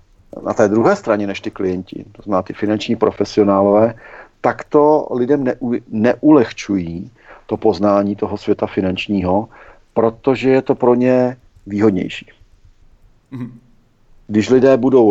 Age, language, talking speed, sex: 50-69, Czech, 120 wpm, male